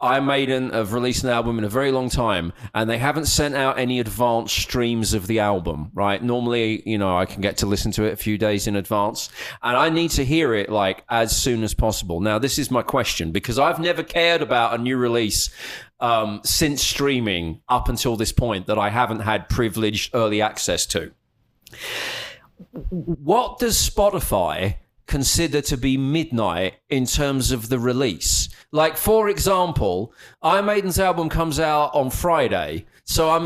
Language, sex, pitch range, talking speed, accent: English, male, 110-175 Hz, 185 wpm, British